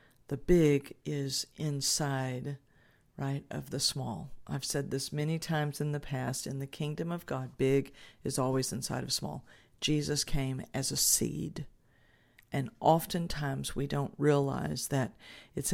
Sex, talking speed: female, 150 wpm